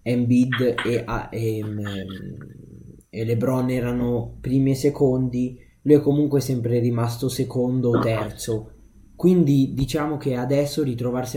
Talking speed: 110 wpm